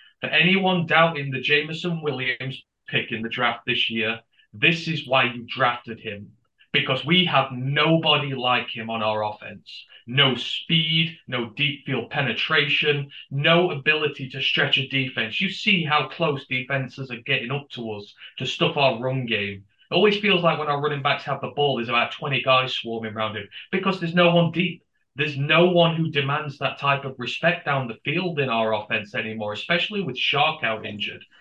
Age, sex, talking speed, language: 30-49, male, 185 wpm, English